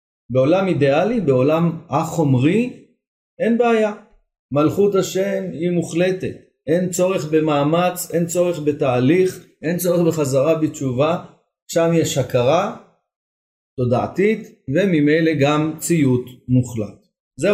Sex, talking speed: male, 100 wpm